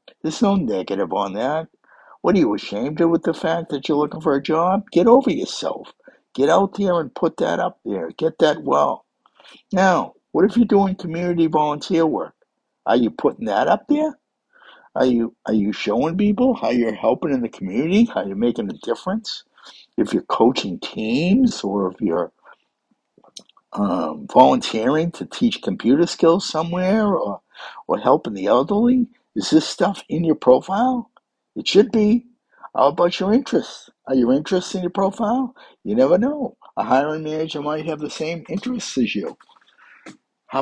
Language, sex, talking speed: English, male, 170 wpm